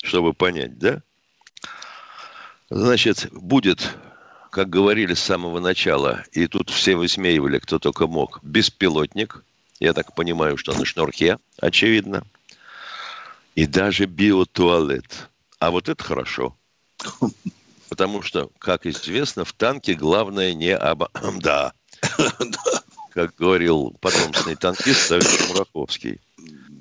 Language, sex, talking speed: Russian, male, 105 wpm